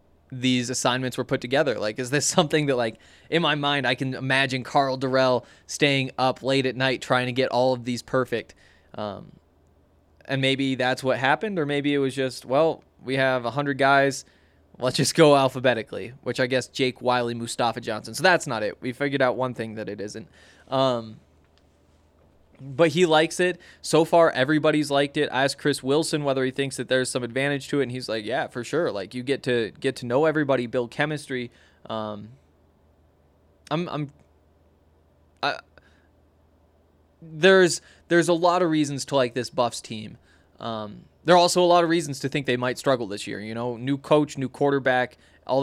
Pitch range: 115-140 Hz